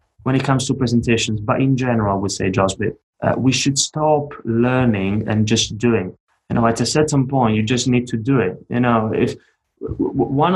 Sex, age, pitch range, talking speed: male, 20-39, 110-135 Hz, 205 wpm